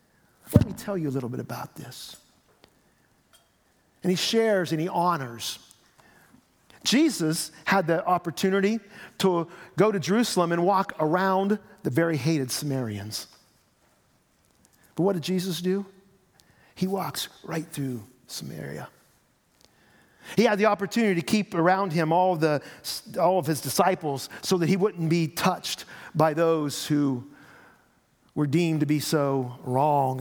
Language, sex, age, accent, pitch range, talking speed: English, male, 50-69, American, 135-185 Hz, 135 wpm